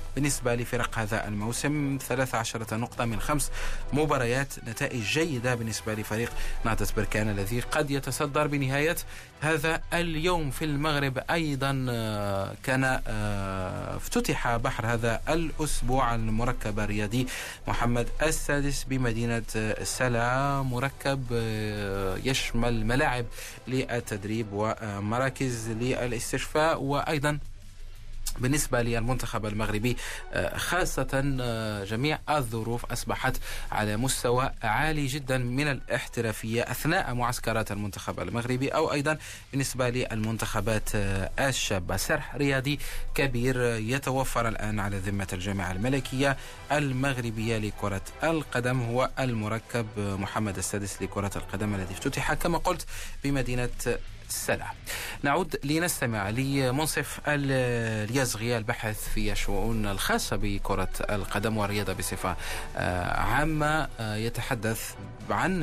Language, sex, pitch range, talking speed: Arabic, male, 105-135 Hz, 95 wpm